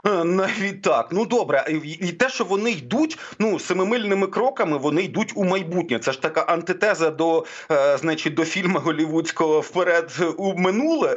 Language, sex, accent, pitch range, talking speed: Ukrainian, male, native, 160-210 Hz, 155 wpm